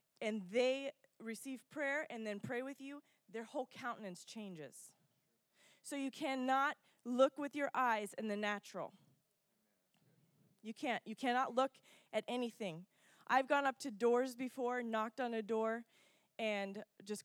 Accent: American